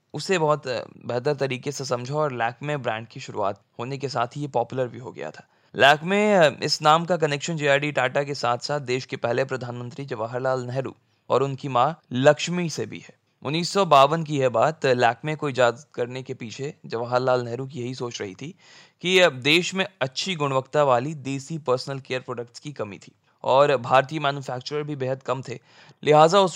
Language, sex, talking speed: Hindi, male, 190 wpm